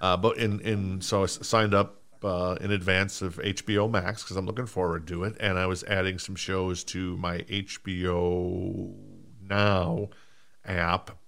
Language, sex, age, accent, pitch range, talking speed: English, male, 50-69, American, 90-105 Hz, 165 wpm